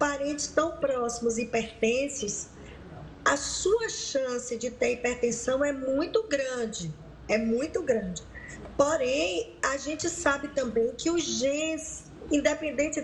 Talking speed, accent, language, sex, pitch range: 120 wpm, Brazilian, Portuguese, female, 240-305 Hz